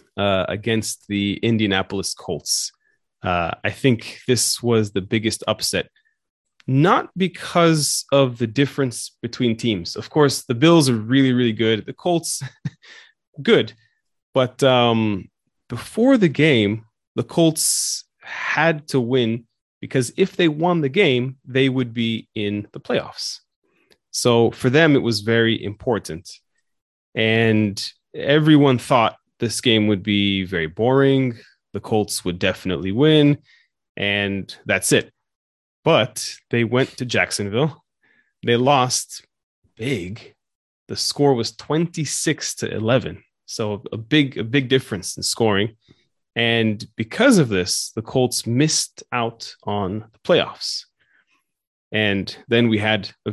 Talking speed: 130 wpm